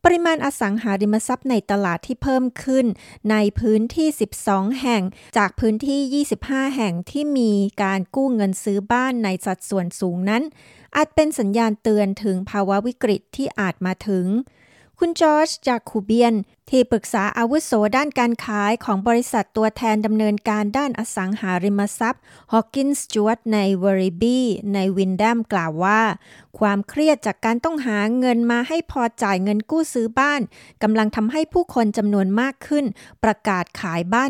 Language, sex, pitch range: Thai, female, 190-245 Hz